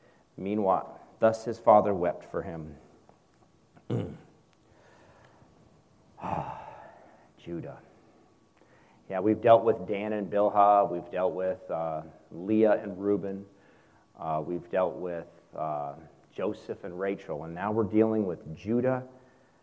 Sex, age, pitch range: male, 40-59, 95-125 Hz